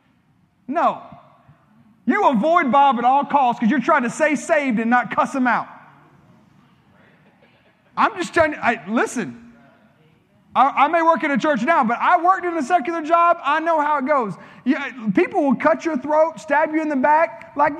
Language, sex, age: English, male, 30-49